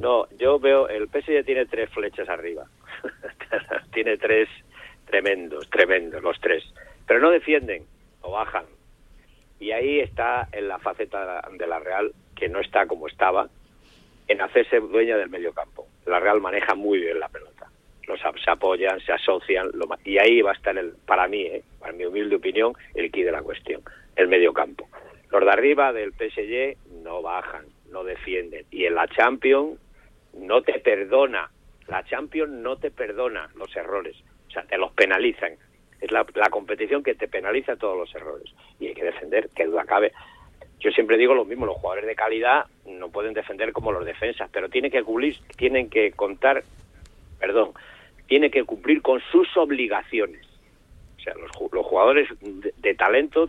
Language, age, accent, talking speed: Spanish, 50-69, Spanish, 175 wpm